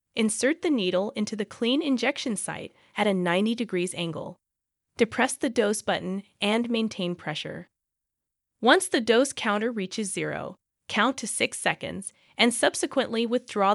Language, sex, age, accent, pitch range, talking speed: English, female, 20-39, American, 190-260 Hz, 145 wpm